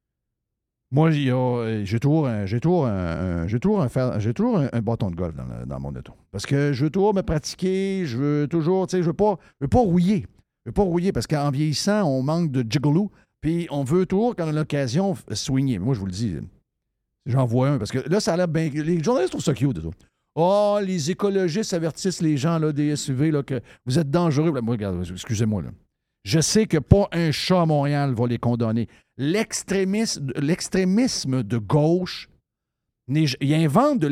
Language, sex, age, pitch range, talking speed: French, male, 50-69, 130-190 Hz, 195 wpm